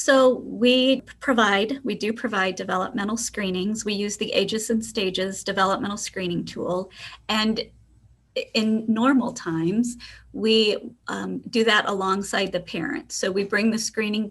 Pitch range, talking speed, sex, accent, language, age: 195-235 Hz, 140 wpm, female, American, English, 40-59